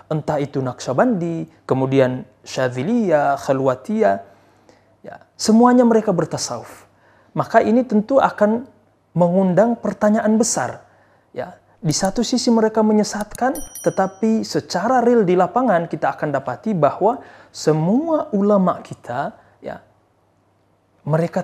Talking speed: 100 wpm